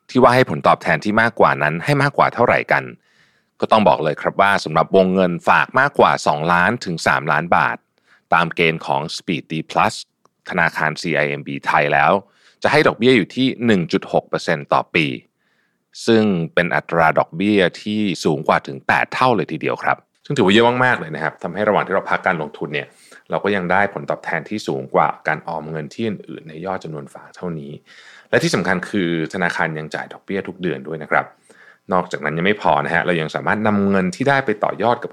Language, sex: Thai, male